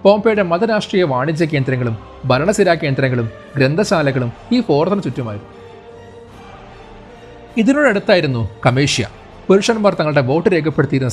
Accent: native